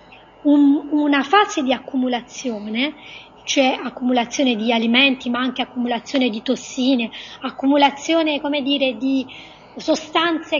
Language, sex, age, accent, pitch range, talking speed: Italian, female, 30-49, native, 250-310 Hz, 100 wpm